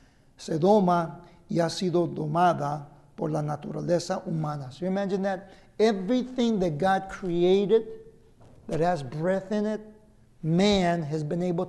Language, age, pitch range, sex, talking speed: English, 50-69, 165-200 Hz, male, 135 wpm